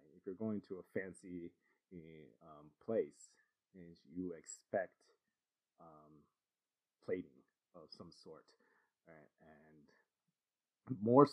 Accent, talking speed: American, 100 wpm